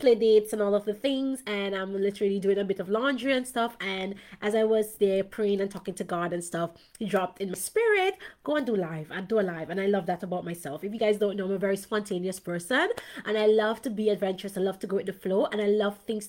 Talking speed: 275 wpm